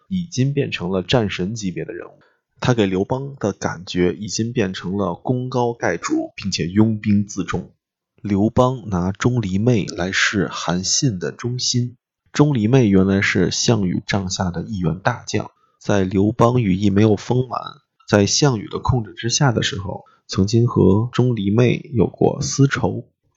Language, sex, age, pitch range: Chinese, male, 20-39, 95-125 Hz